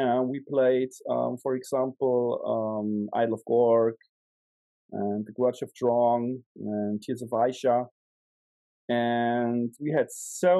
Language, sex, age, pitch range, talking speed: English, male, 30-49, 120-160 Hz, 130 wpm